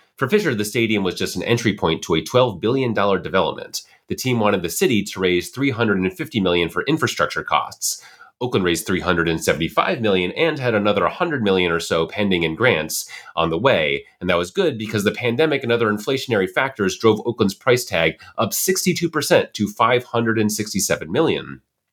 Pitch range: 95-135 Hz